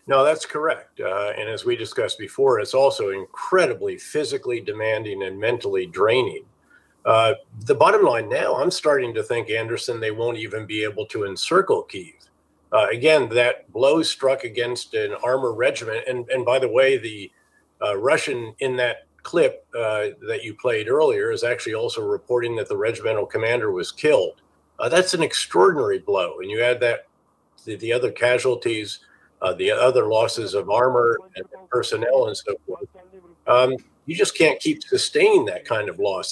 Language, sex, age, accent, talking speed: English, male, 50-69, American, 170 wpm